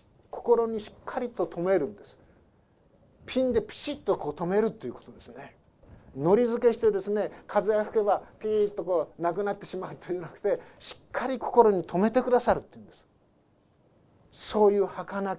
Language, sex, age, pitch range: Japanese, male, 50-69, 175-225 Hz